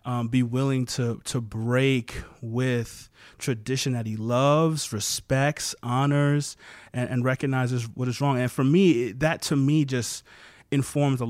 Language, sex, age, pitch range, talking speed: English, male, 30-49, 120-150 Hz, 150 wpm